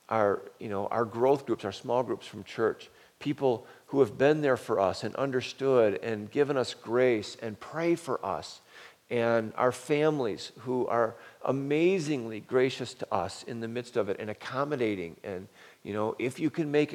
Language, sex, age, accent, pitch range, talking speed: English, male, 50-69, American, 110-135 Hz, 180 wpm